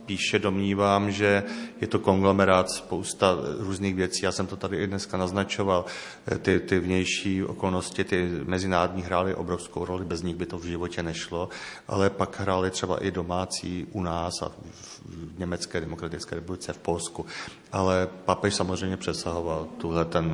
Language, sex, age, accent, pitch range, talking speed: Czech, male, 40-59, native, 90-100 Hz, 150 wpm